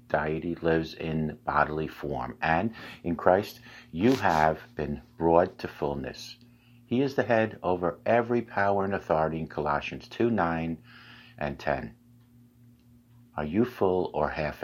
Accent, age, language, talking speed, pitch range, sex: American, 50-69, English, 140 wpm, 80-120 Hz, male